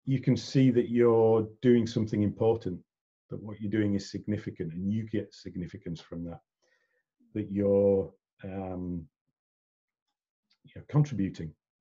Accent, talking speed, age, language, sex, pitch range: British, 125 wpm, 40-59, English, male, 95-120 Hz